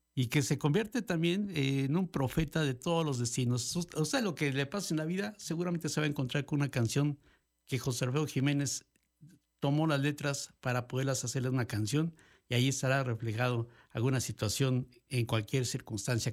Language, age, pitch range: Spanish, 60-79, 125-155 Hz